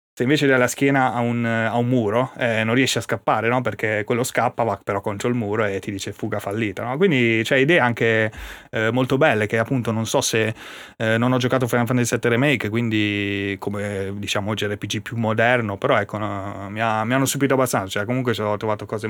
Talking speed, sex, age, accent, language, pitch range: 230 wpm, male, 30-49, native, Italian, 105-125 Hz